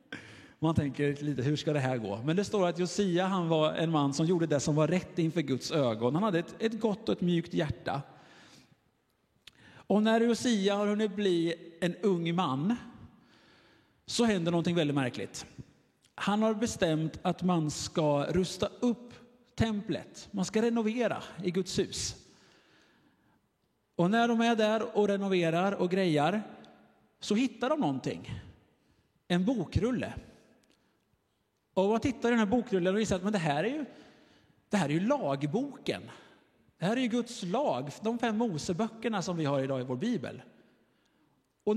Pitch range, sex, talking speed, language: 160-220 Hz, male, 165 wpm, Swedish